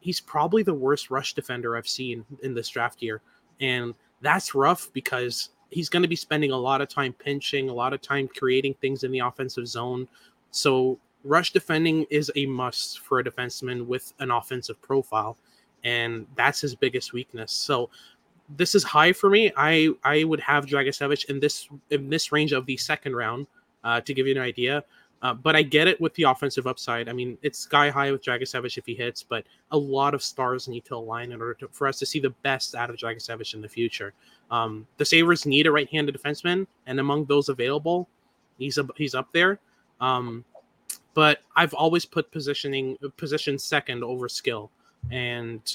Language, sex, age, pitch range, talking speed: English, male, 20-39, 125-150 Hz, 200 wpm